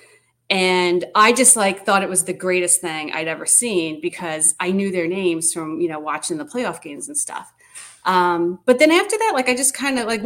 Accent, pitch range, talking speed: American, 170-225 Hz, 220 wpm